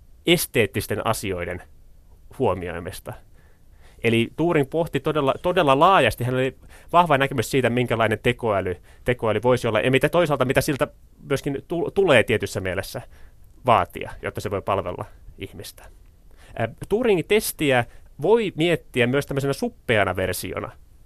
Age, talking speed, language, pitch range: 30-49, 120 wpm, Finnish, 100-145 Hz